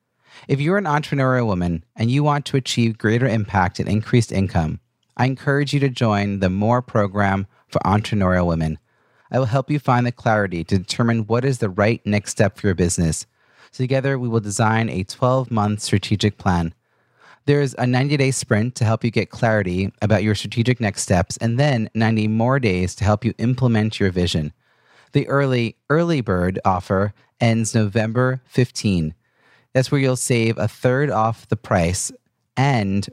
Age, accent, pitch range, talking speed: 30-49, American, 100-125 Hz, 175 wpm